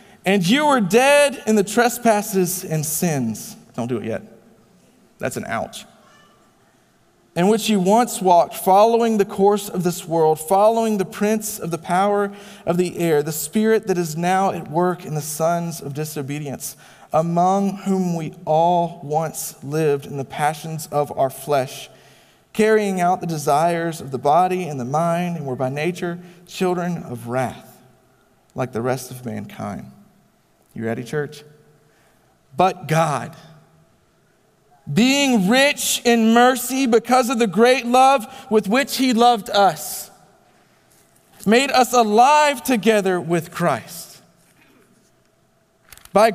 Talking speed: 140 wpm